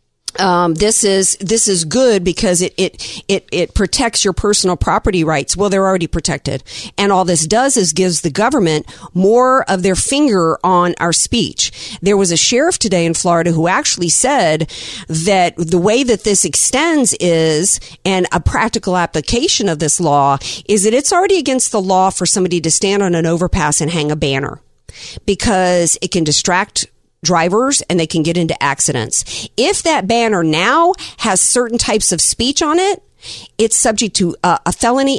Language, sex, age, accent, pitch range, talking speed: English, female, 50-69, American, 160-215 Hz, 175 wpm